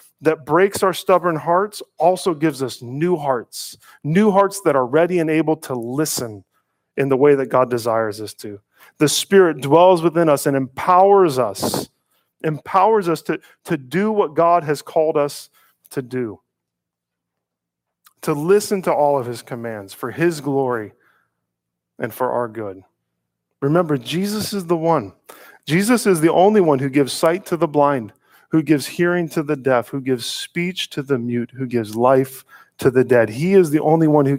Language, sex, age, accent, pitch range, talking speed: English, male, 40-59, American, 130-175 Hz, 175 wpm